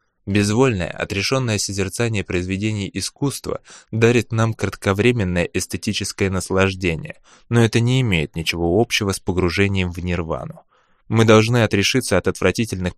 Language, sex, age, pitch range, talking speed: English, male, 20-39, 95-120 Hz, 115 wpm